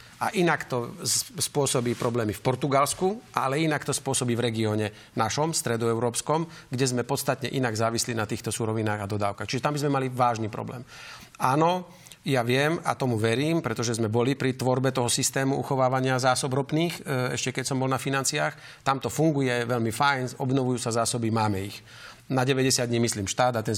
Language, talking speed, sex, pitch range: Slovak, 180 wpm, male, 115-135 Hz